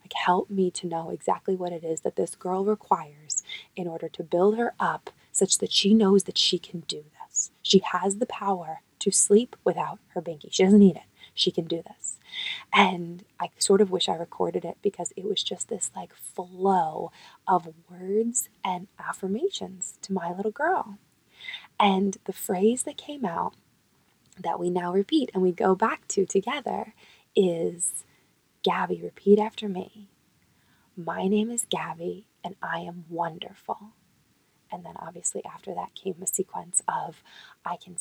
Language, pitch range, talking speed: English, 175-210 Hz, 170 wpm